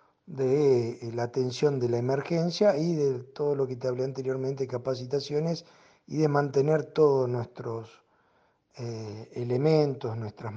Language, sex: Spanish, male